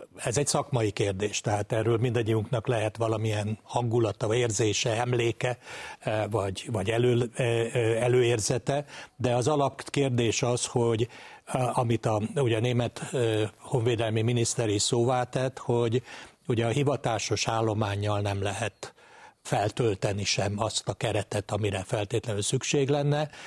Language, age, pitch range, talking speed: Hungarian, 60-79, 105-125 Hz, 120 wpm